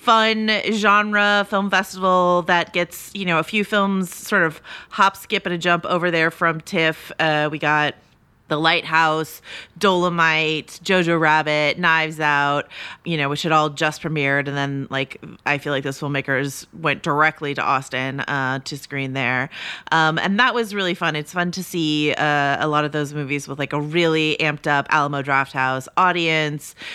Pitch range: 150-190 Hz